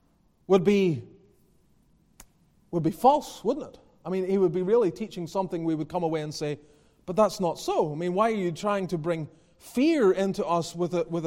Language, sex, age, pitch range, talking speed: English, male, 30-49, 170-220 Hz, 210 wpm